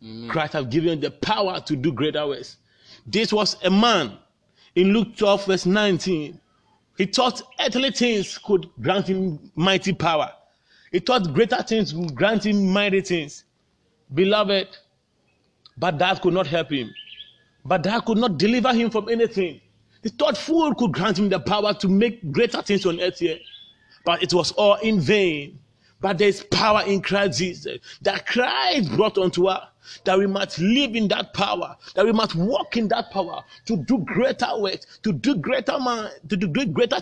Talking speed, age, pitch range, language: 180 wpm, 30-49, 165-215 Hz, English